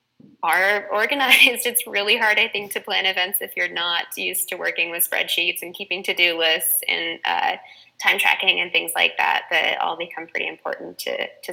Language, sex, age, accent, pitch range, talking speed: English, female, 20-39, American, 180-245 Hz, 195 wpm